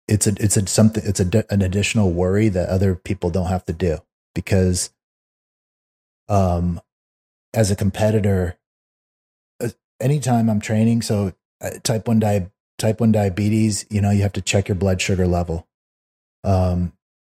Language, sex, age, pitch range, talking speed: English, male, 30-49, 90-105 Hz, 150 wpm